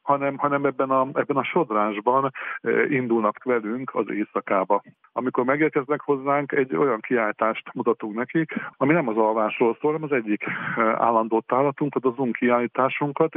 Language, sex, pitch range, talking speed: Hungarian, male, 115-150 Hz, 140 wpm